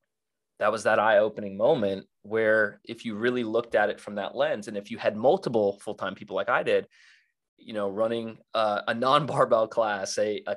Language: English